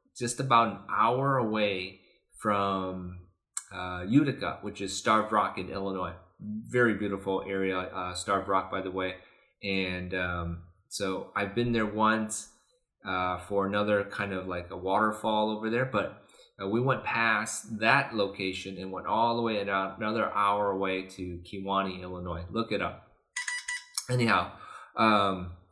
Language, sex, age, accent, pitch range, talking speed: English, male, 20-39, American, 90-110 Hz, 145 wpm